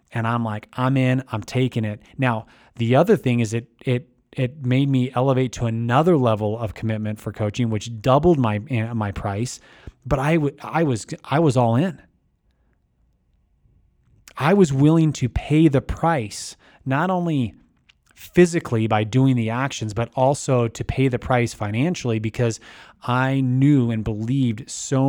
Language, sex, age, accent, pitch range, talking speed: English, male, 30-49, American, 105-130 Hz, 160 wpm